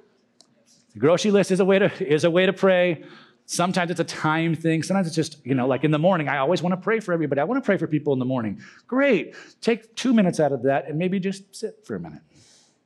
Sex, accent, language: male, American, English